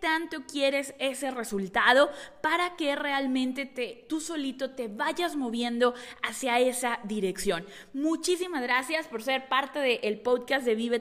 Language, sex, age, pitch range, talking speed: Spanish, female, 20-39, 245-305 Hz, 140 wpm